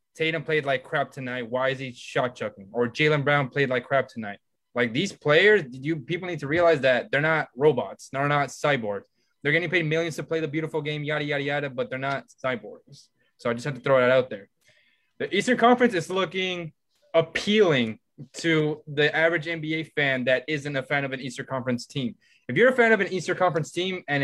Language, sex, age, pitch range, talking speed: English, male, 20-39, 135-165 Hz, 215 wpm